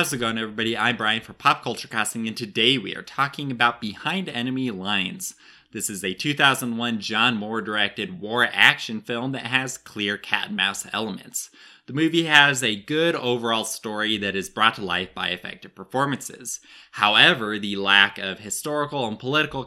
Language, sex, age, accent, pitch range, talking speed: English, male, 20-39, American, 100-125 Hz, 175 wpm